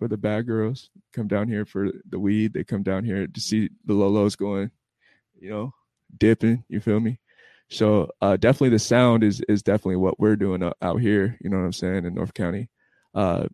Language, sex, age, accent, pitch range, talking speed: English, male, 20-39, American, 100-120 Hz, 210 wpm